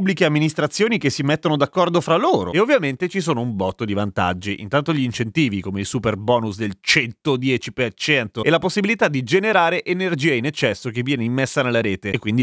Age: 30-49